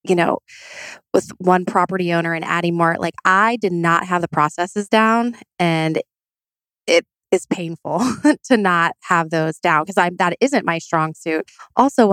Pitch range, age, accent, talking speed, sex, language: 175-240 Hz, 20-39, American, 165 wpm, female, English